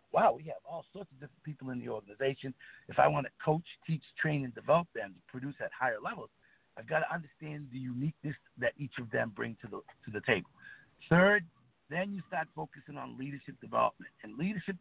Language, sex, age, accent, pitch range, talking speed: English, male, 50-69, American, 125-155 Hz, 210 wpm